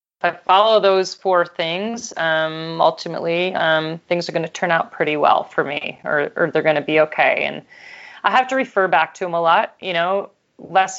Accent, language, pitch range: American, English, 160-190 Hz